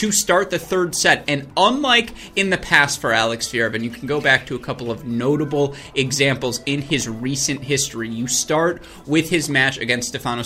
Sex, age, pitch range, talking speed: male, 20-39, 115-145 Hz, 200 wpm